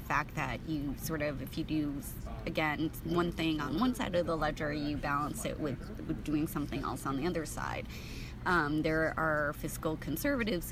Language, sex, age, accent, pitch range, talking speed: English, female, 20-39, American, 145-160 Hz, 185 wpm